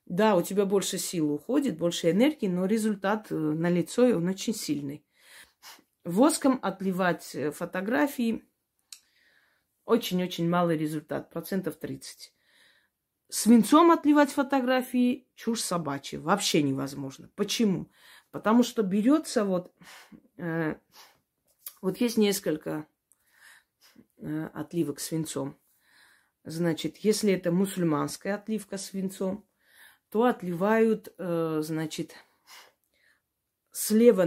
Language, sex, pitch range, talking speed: Russian, female, 165-225 Hz, 90 wpm